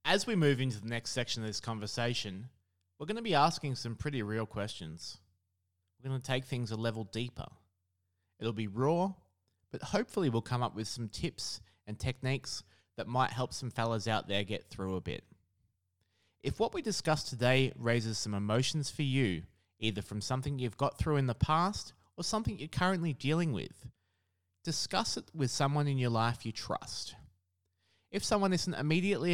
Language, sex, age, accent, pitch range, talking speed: English, male, 20-39, Australian, 100-140 Hz, 180 wpm